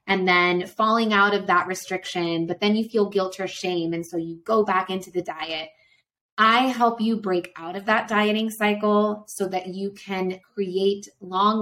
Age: 20-39